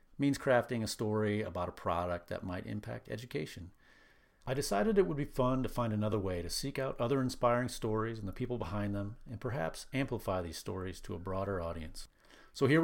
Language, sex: English, male